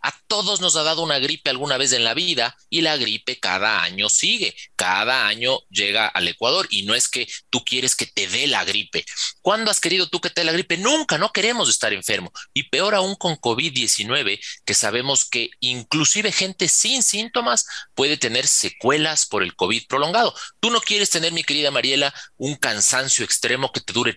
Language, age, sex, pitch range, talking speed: Spanish, 30-49, male, 115-160 Hz, 200 wpm